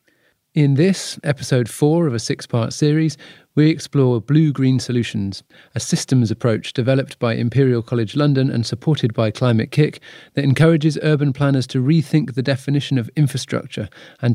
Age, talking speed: 40-59, 150 wpm